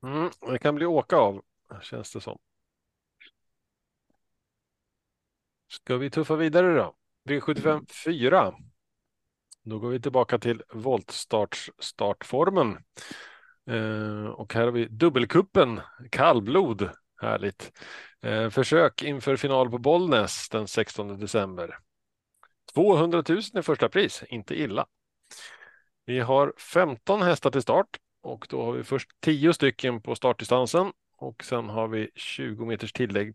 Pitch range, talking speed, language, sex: 115-155 Hz, 125 wpm, Swedish, male